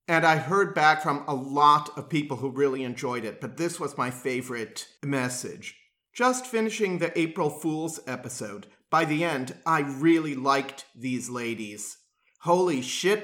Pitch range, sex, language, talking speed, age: 125-160 Hz, male, English, 160 wpm, 40-59